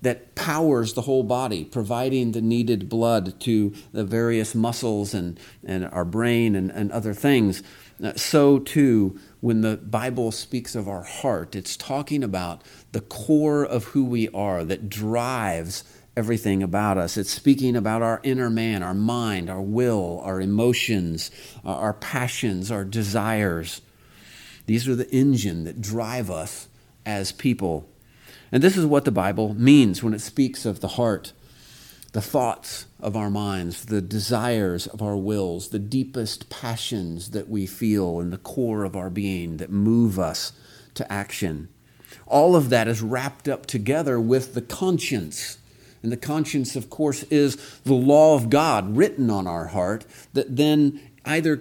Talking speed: 160 wpm